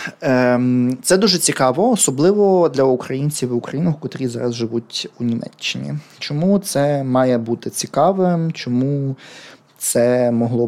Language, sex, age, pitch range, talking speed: Ukrainian, male, 20-39, 120-150 Hz, 120 wpm